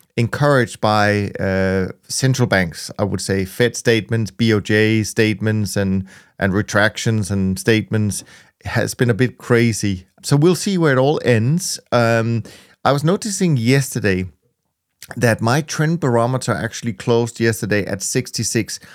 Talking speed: 140 wpm